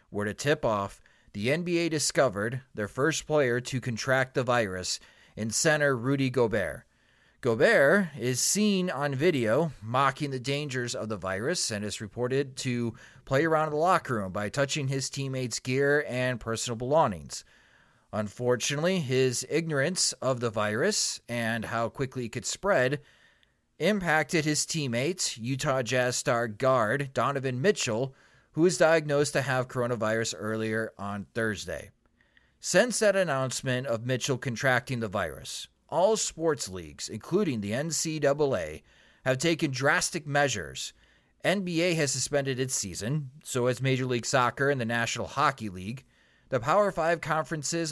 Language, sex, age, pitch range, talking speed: English, male, 30-49, 115-150 Hz, 145 wpm